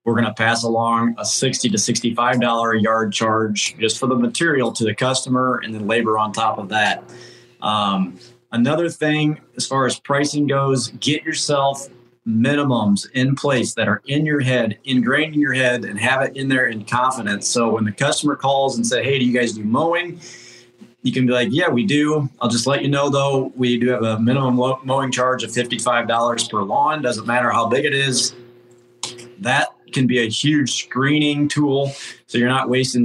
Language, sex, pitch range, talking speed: English, male, 115-135 Hz, 200 wpm